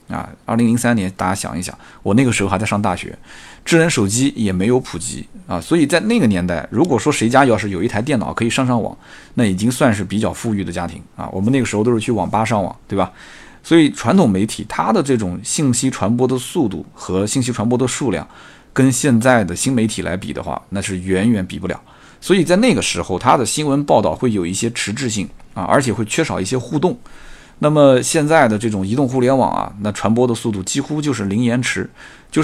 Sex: male